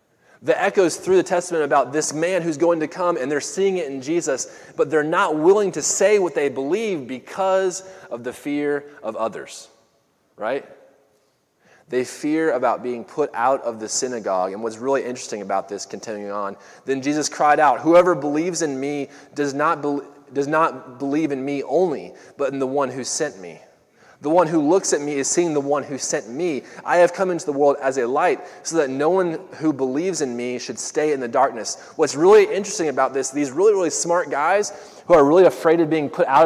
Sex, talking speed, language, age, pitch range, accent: male, 210 wpm, English, 20-39, 135-175 Hz, American